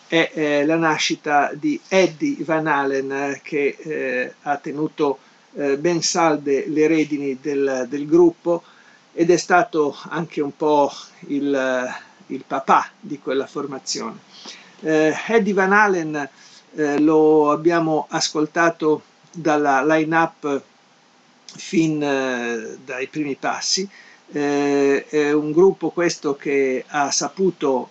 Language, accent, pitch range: Italian, native, 135-165 Hz